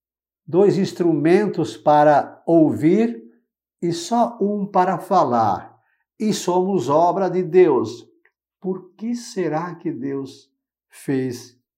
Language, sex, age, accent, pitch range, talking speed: Portuguese, male, 60-79, Brazilian, 135-185 Hz, 100 wpm